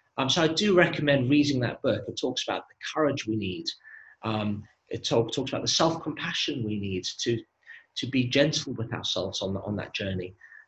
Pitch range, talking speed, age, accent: 120-160 Hz, 185 wpm, 40-59, British